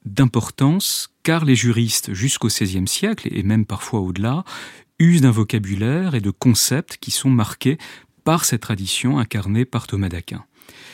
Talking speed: 150 wpm